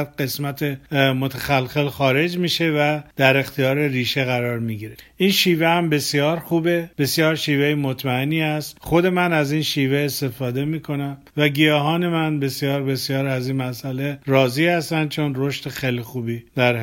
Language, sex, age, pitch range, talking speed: Persian, male, 50-69, 135-165 Hz, 150 wpm